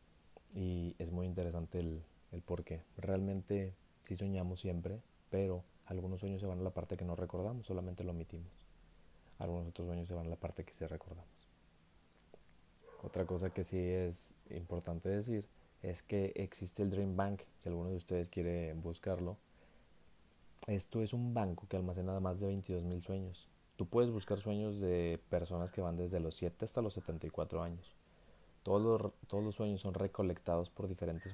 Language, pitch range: Spanish, 85-95 Hz